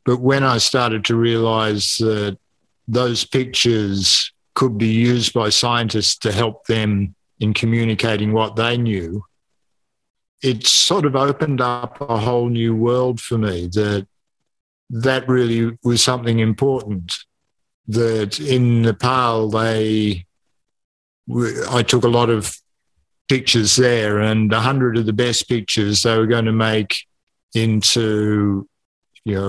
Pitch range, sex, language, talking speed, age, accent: 105-125 Hz, male, English, 130 wpm, 50-69, Australian